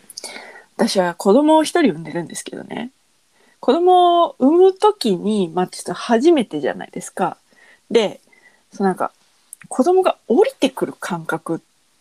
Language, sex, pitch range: Japanese, female, 175-280 Hz